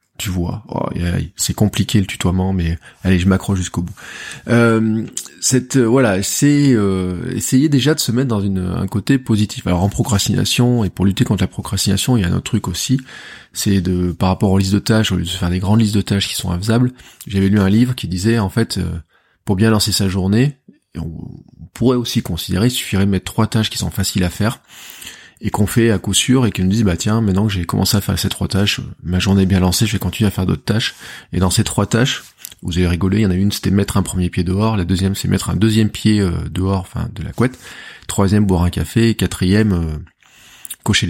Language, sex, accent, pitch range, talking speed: French, male, French, 90-110 Hz, 235 wpm